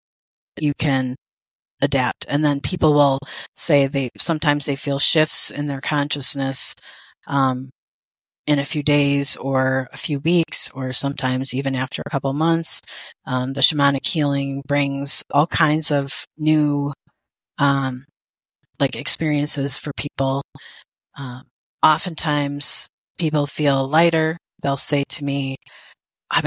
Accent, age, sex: American, 30-49, female